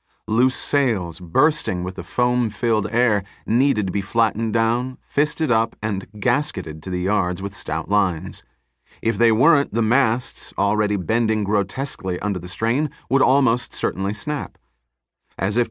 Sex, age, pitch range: male, 30-49, 95-125 Hz